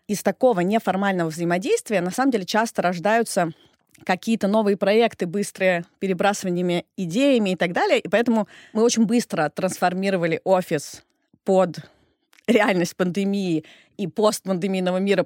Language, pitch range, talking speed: Russian, 180-215 Hz, 120 wpm